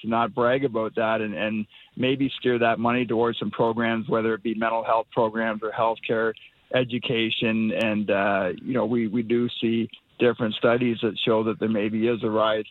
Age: 50-69